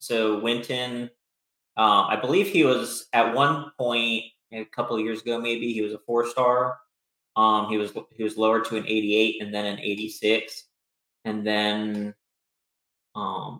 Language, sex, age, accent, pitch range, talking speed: English, male, 30-49, American, 110-120 Hz, 165 wpm